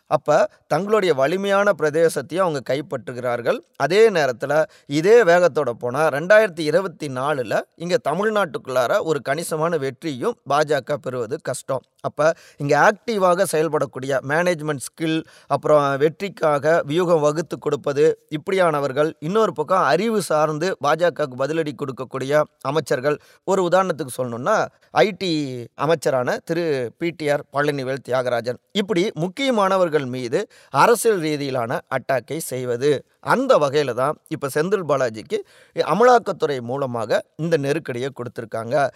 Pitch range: 140-190 Hz